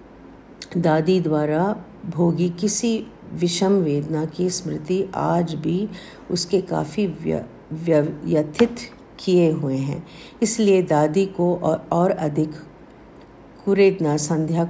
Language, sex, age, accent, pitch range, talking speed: Hindi, female, 50-69, native, 165-205 Hz, 100 wpm